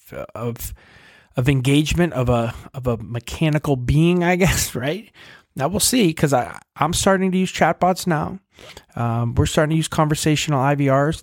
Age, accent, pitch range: 20-39, American, 110-140 Hz